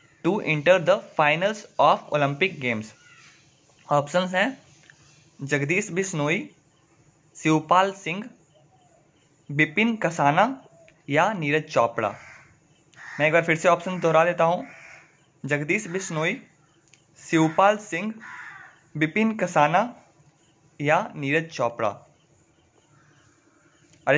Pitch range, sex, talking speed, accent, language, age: 150-200 Hz, male, 90 wpm, native, Hindi, 20-39